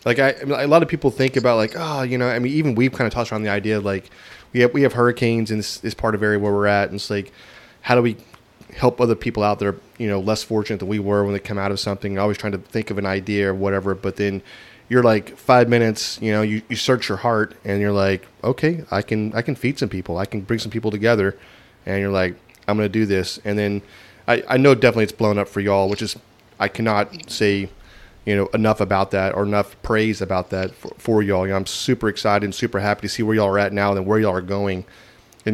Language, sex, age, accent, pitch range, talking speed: English, male, 30-49, American, 100-115 Hz, 265 wpm